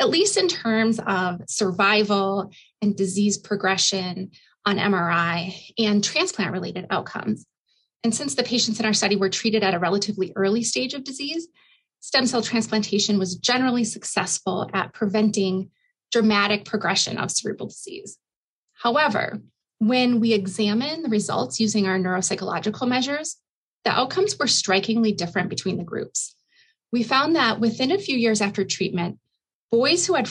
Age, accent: 30-49, American